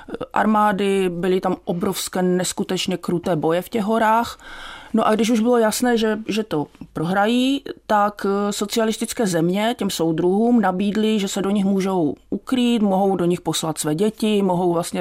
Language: Czech